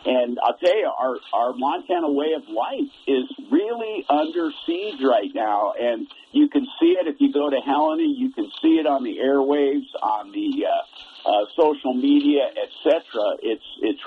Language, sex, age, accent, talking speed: English, male, 50-69, American, 180 wpm